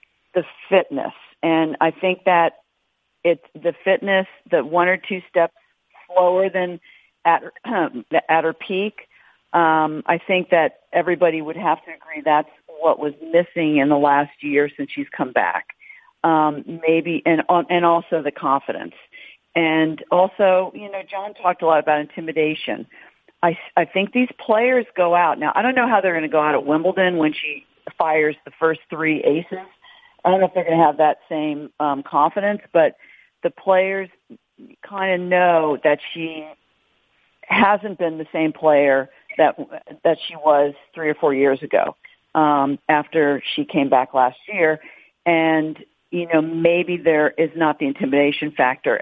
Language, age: English, 50-69